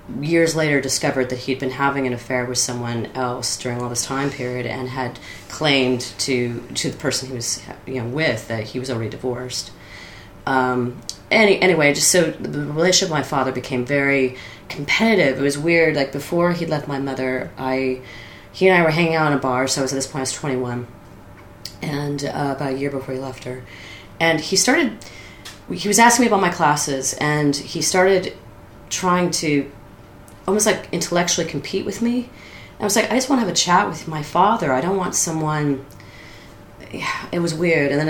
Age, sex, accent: 30-49, female, American